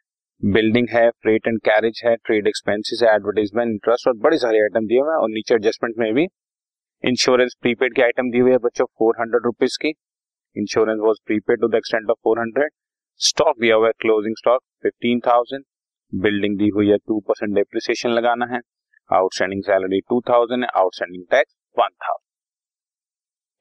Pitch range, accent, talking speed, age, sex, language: 105-125 Hz, native, 120 wpm, 30-49, male, Hindi